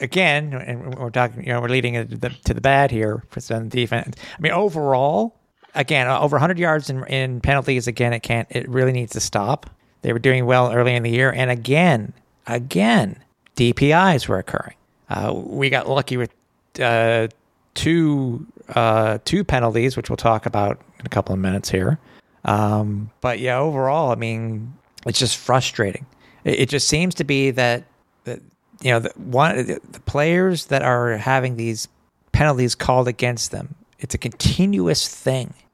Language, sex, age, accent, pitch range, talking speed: English, male, 40-59, American, 120-150 Hz, 175 wpm